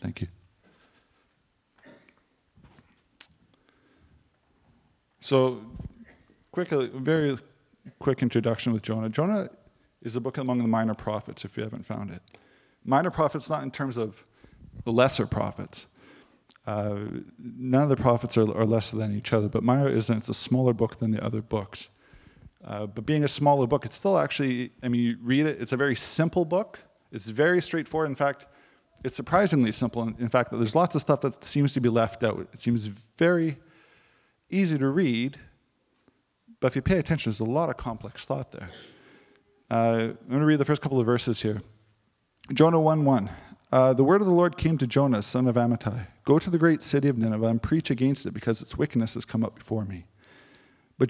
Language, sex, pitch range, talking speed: English, male, 110-145 Hz, 185 wpm